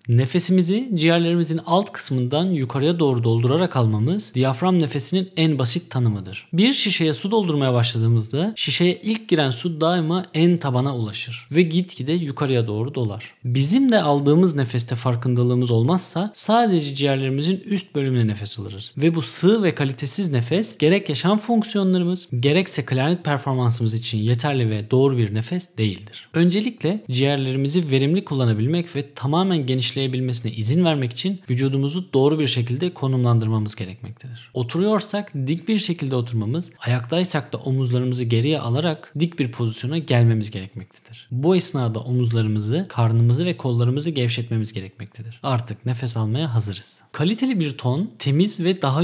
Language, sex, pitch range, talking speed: Turkish, male, 120-175 Hz, 135 wpm